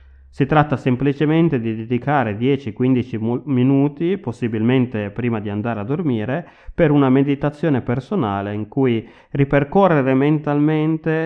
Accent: native